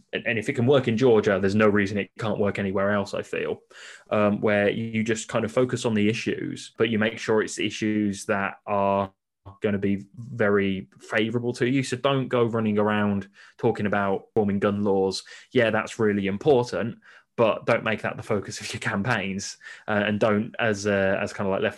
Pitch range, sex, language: 100-115 Hz, male, English